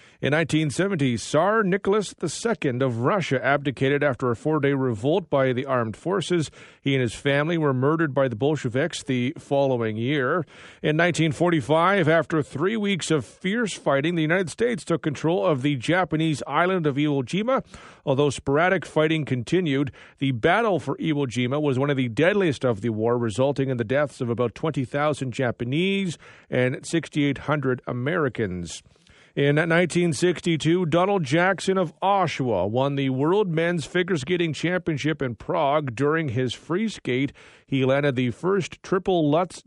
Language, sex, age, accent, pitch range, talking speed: English, male, 40-59, American, 135-170 Hz, 155 wpm